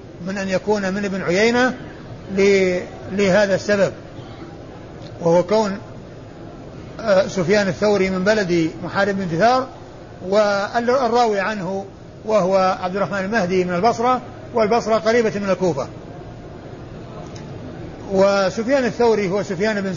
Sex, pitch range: male, 180-215 Hz